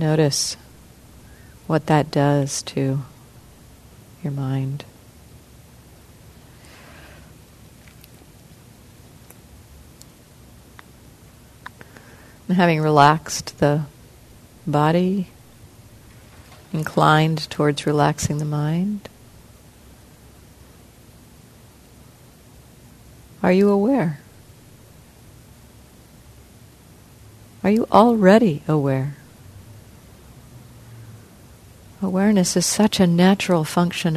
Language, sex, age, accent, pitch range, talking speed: English, female, 50-69, American, 120-160 Hz, 50 wpm